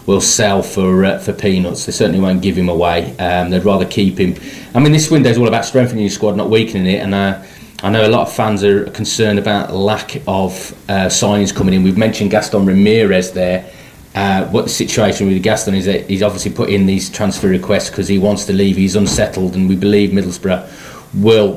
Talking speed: 220 wpm